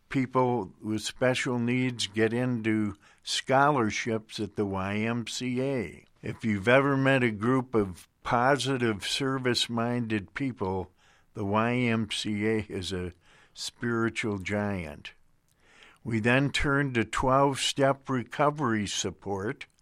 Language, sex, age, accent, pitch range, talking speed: English, male, 50-69, American, 105-125 Hz, 100 wpm